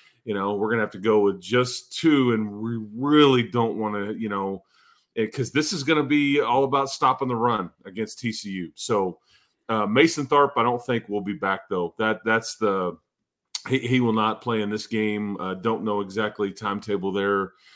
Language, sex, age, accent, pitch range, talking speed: English, male, 30-49, American, 100-115 Hz, 195 wpm